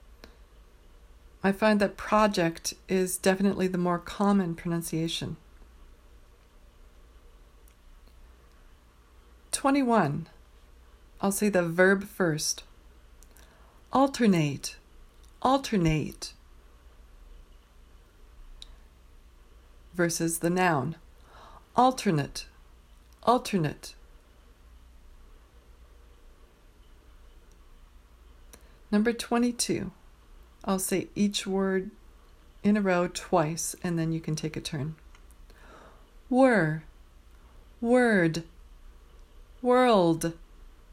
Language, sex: English, female